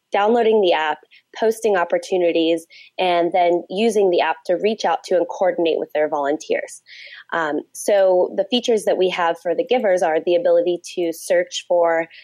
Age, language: 20-39, English